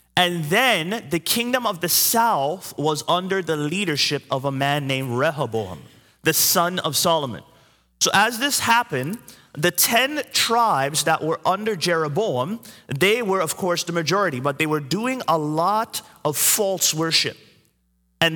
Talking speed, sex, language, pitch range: 155 wpm, male, English, 145-210 Hz